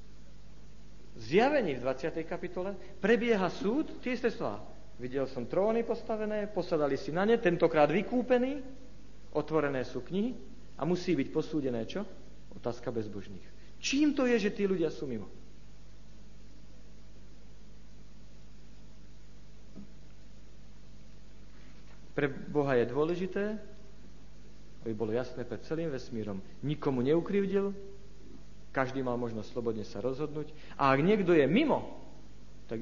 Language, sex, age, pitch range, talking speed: Slovak, male, 50-69, 120-185 Hz, 110 wpm